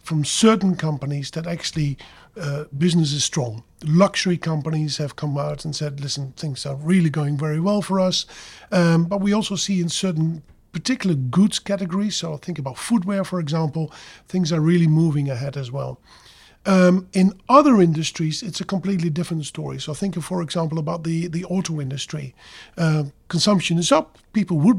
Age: 50-69